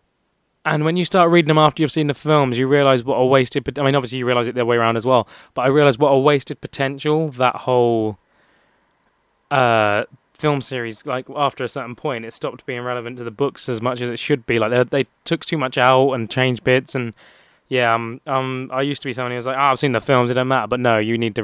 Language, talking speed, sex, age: English, 260 wpm, male, 20-39